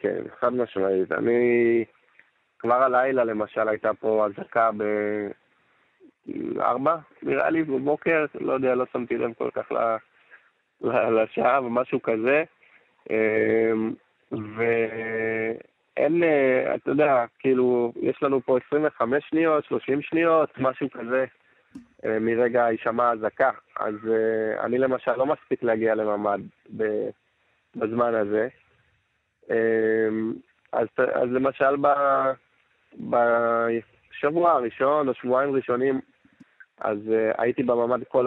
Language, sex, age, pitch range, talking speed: Hebrew, male, 20-39, 115-140 Hz, 95 wpm